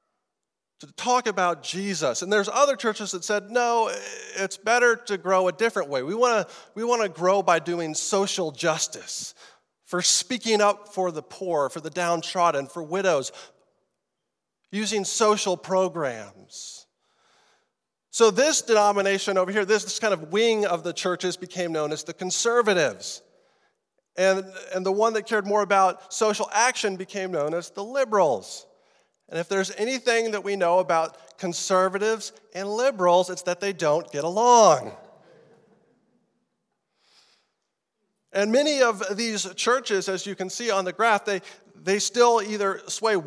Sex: male